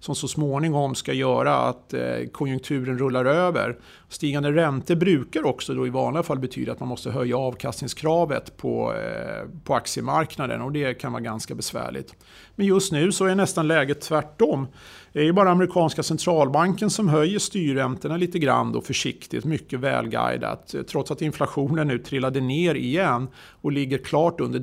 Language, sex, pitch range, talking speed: Swedish, male, 130-165 Hz, 160 wpm